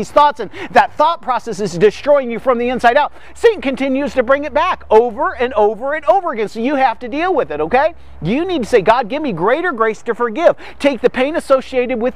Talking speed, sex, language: 235 wpm, male, English